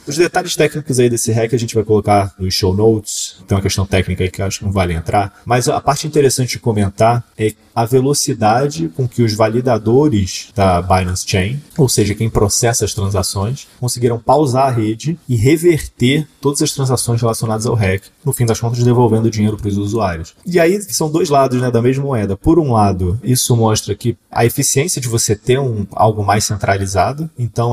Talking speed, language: 205 wpm, Portuguese